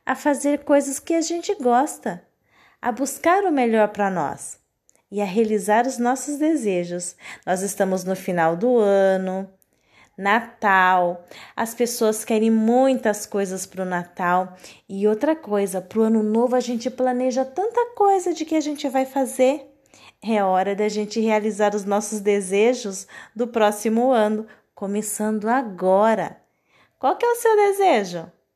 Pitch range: 200-270 Hz